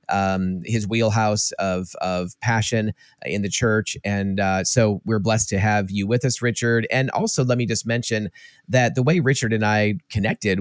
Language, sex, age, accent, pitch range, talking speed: English, male, 30-49, American, 100-115 Hz, 185 wpm